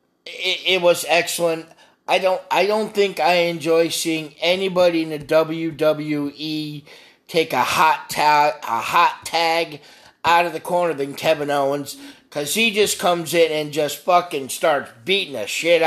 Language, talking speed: English, 160 wpm